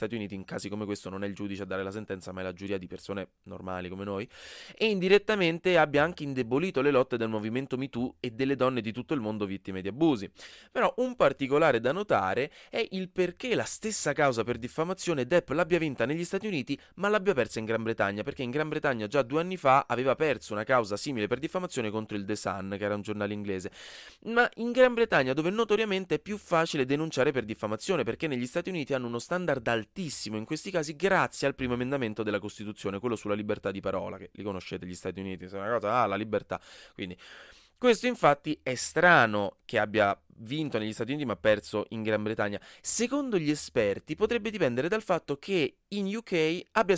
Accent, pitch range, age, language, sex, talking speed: native, 105-175 Hz, 20-39, Italian, male, 210 wpm